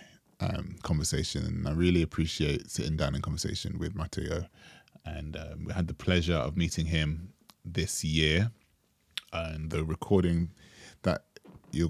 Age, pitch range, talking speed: 20-39, 80-90 Hz, 140 wpm